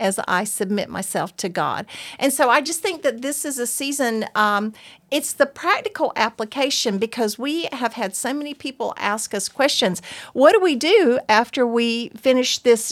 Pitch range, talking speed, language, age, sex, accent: 210-275 Hz, 180 wpm, English, 50-69, female, American